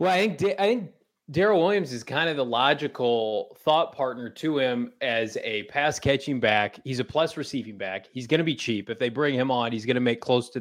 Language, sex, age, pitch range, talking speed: English, male, 20-39, 115-155 Hz, 215 wpm